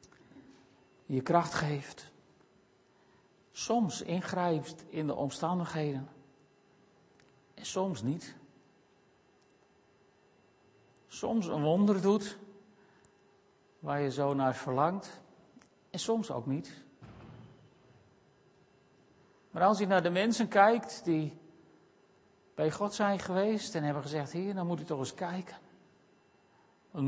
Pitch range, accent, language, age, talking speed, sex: 140-195 Hz, Dutch, Dutch, 50-69, 105 wpm, male